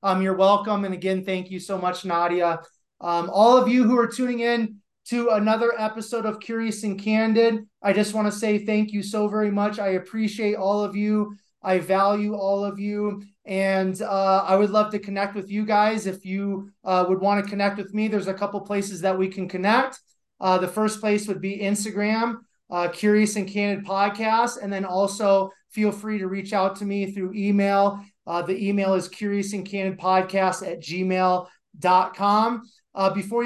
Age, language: 20-39, English